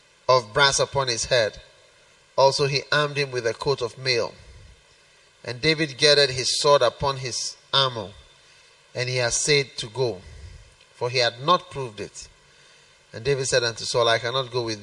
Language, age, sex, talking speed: English, 30-49, male, 175 wpm